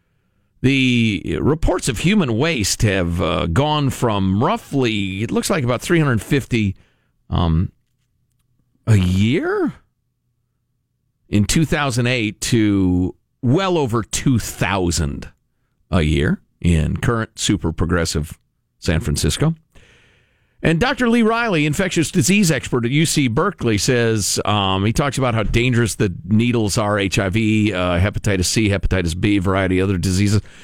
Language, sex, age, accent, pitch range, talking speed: English, male, 50-69, American, 100-165 Hz, 125 wpm